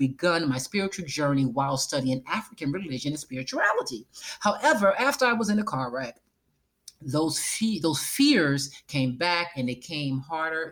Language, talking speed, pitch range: English, 150 wpm, 130-195 Hz